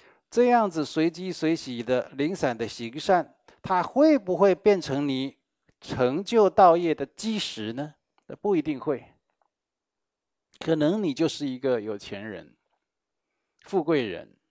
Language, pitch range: Chinese, 135-180 Hz